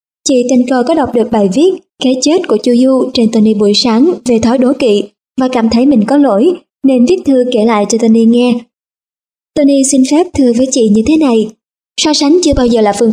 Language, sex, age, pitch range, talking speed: Vietnamese, male, 20-39, 225-280 Hz, 235 wpm